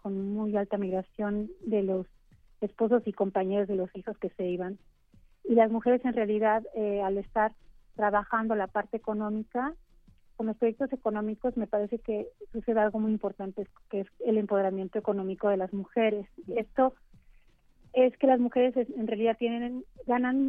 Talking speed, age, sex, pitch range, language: 165 wpm, 30-49, female, 200-230 Hz, Spanish